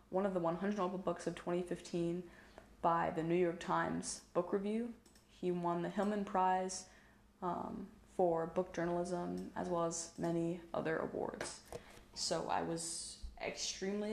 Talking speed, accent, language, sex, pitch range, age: 145 wpm, American, English, female, 170-190 Hz, 20-39